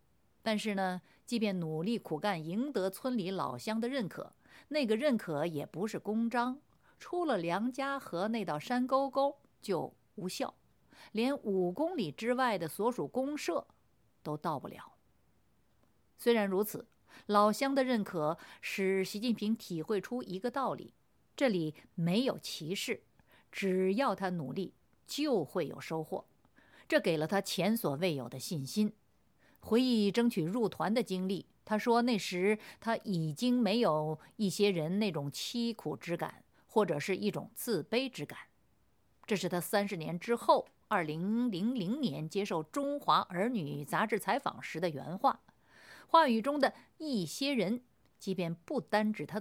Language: Chinese